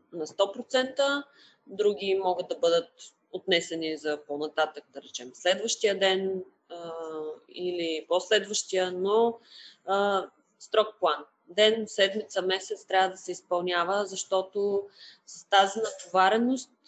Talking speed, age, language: 110 wpm, 20-39, Bulgarian